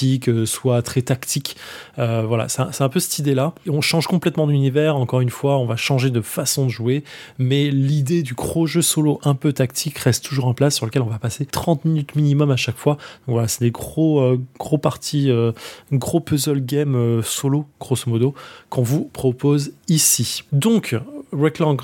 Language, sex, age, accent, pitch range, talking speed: French, male, 20-39, French, 120-145 Hz, 205 wpm